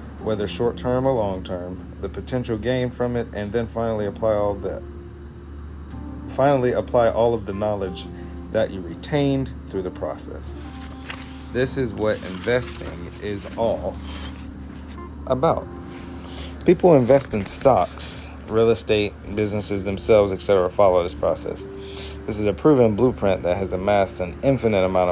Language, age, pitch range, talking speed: English, 40-59, 85-115 Hz, 135 wpm